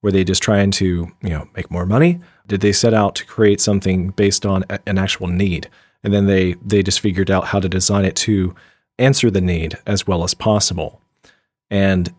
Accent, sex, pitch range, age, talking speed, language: American, male, 95-115 Hz, 40-59, 210 wpm, English